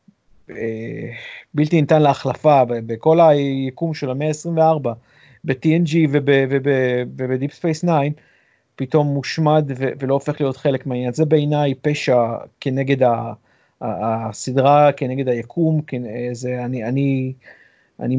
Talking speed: 85 wpm